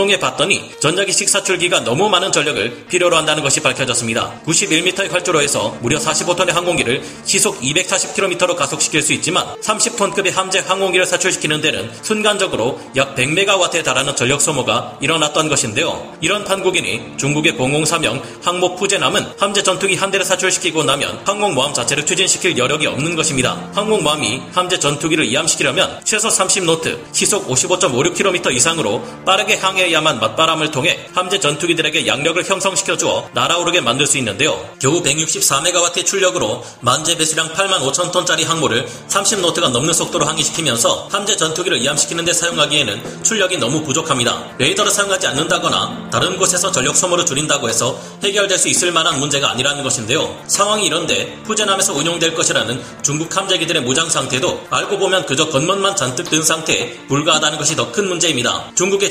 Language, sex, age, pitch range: Korean, male, 30-49, 150-190 Hz